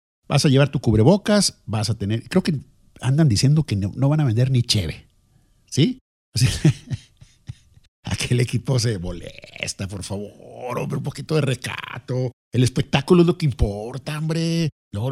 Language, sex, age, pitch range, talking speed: Spanish, male, 50-69, 115-185 Hz, 165 wpm